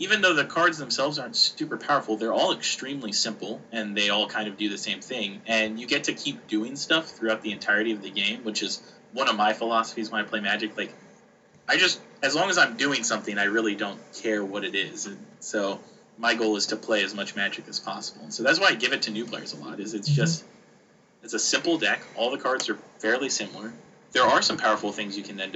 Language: English